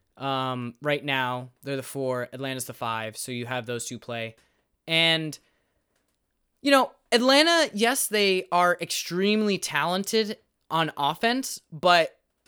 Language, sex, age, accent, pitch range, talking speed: English, male, 20-39, American, 135-210 Hz, 130 wpm